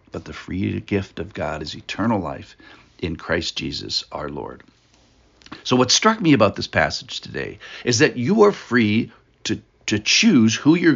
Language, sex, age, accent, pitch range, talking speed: English, male, 60-79, American, 95-130 Hz, 175 wpm